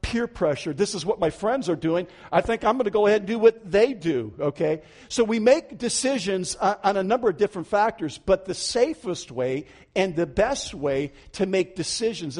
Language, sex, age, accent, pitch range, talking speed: English, male, 50-69, American, 185-240 Hz, 210 wpm